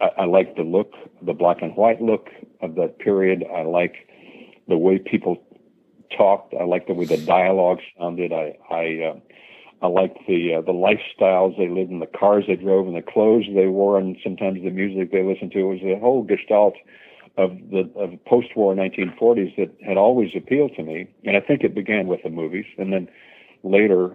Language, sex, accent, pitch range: English, male, American, 85-100 Hz